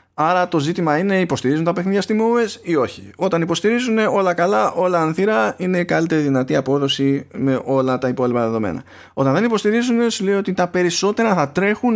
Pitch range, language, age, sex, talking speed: 125-180 Hz, Greek, 20-39, male, 195 wpm